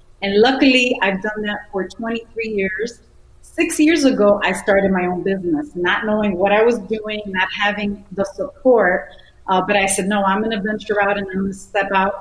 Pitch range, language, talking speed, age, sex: 200-245 Hz, English, 205 wpm, 30-49, female